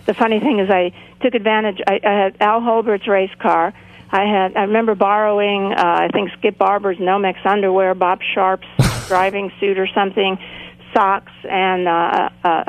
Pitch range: 180-215 Hz